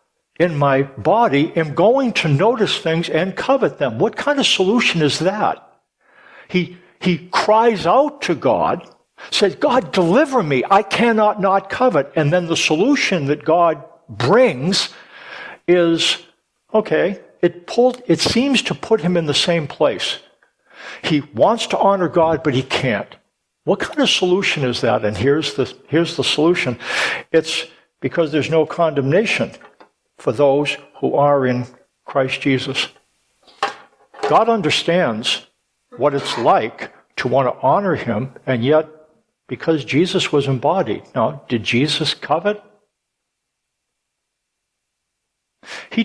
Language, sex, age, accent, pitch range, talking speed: English, male, 60-79, American, 145-195 Hz, 135 wpm